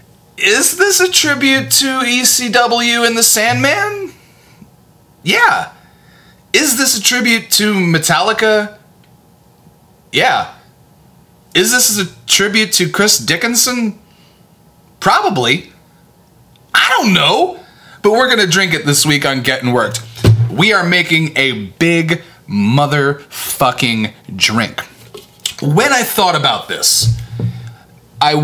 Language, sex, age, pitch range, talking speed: English, male, 30-49, 120-195 Hz, 110 wpm